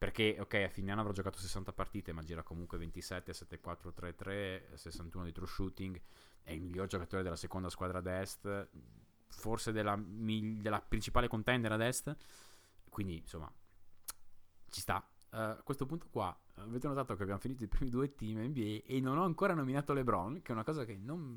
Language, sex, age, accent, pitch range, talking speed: Italian, male, 30-49, native, 95-125 Hz, 185 wpm